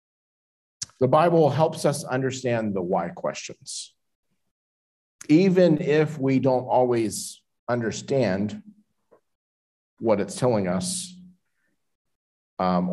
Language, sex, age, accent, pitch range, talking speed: English, male, 50-69, American, 110-155 Hz, 90 wpm